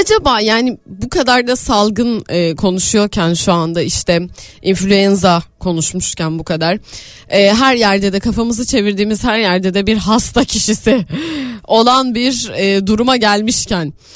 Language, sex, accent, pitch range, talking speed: Turkish, female, native, 175-235 Hz, 125 wpm